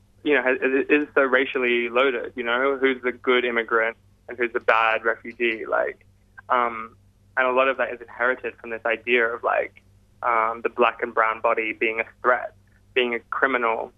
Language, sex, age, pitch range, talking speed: English, male, 20-39, 100-120 Hz, 190 wpm